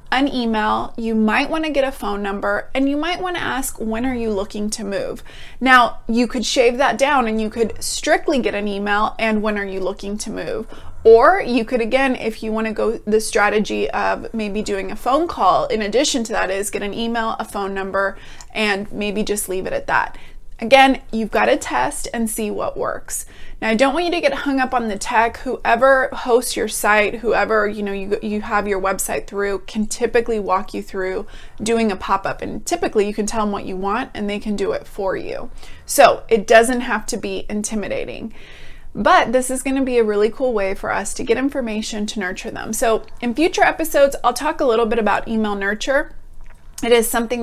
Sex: female